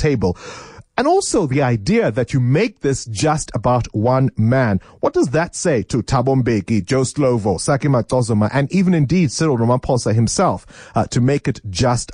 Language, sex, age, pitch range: English, male, 30-49, 110-155 Hz